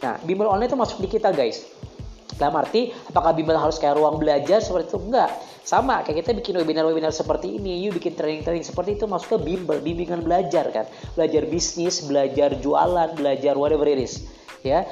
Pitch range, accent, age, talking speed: 145-205 Hz, native, 20-39, 190 wpm